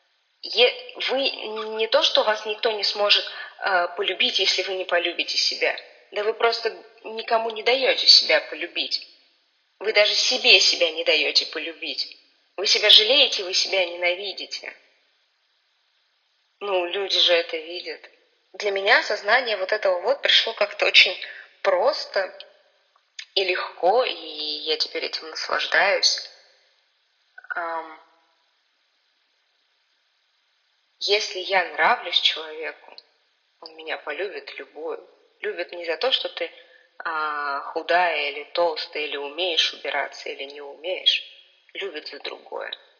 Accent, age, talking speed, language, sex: native, 20-39, 120 wpm, Russian, female